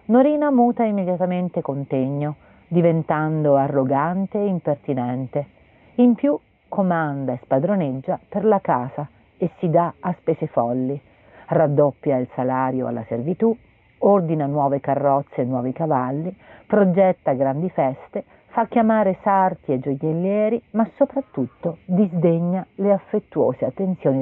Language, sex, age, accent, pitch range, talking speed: Italian, female, 40-59, native, 140-195 Hz, 115 wpm